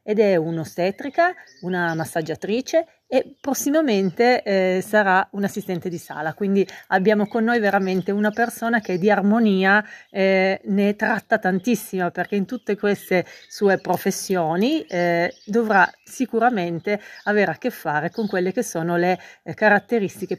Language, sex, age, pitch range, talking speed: Italian, female, 40-59, 170-220 Hz, 130 wpm